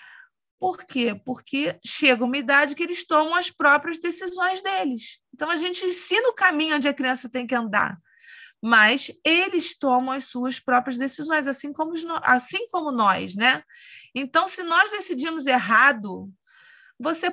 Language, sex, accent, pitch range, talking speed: Portuguese, female, Brazilian, 255-320 Hz, 145 wpm